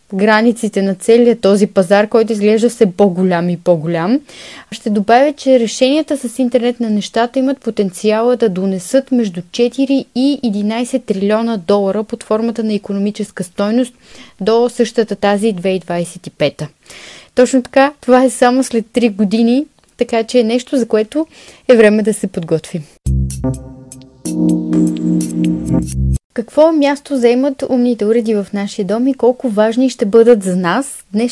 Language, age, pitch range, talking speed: Bulgarian, 20-39, 190-245 Hz, 140 wpm